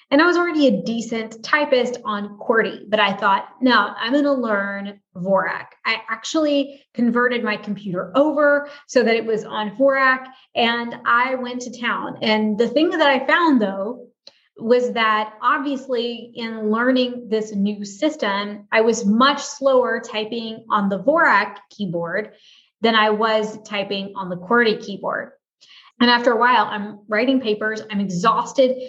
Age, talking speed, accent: 20-39, 160 wpm, American